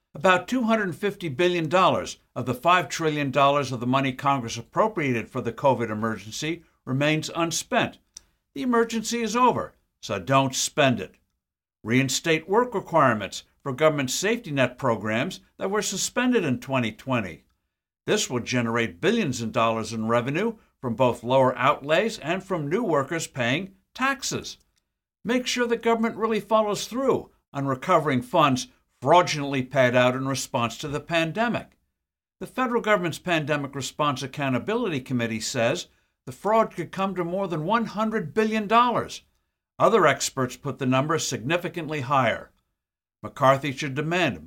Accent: American